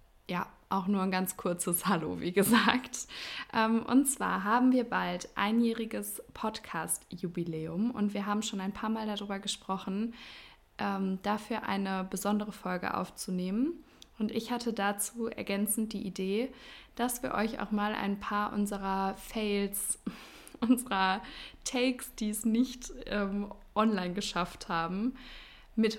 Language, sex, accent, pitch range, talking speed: German, female, German, 190-230 Hz, 135 wpm